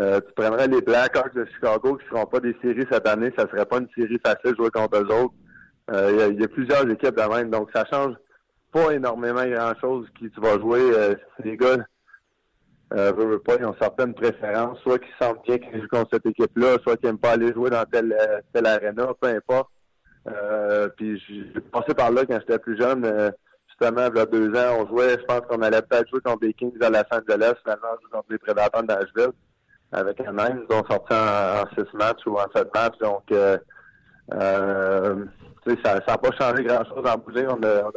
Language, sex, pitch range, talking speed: French, male, 110-125 Hz, 235 wpm